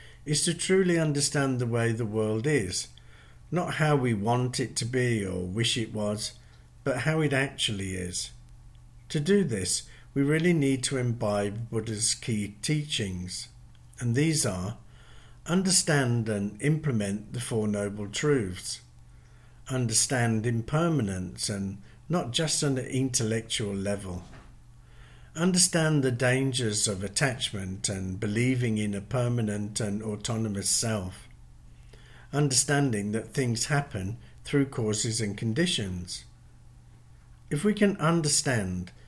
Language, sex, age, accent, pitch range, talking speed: English, male, 50-69, British, 105-135 Hz, 125 wpm